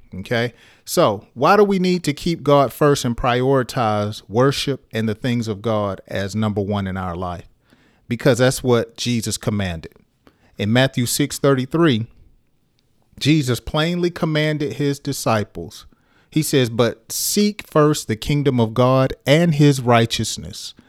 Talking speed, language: 145 wpm, English